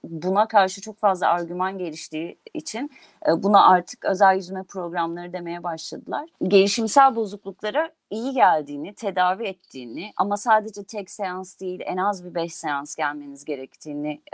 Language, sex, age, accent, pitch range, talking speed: Turkish, female, 40-59, native, 170-220 Hz, 135 wpm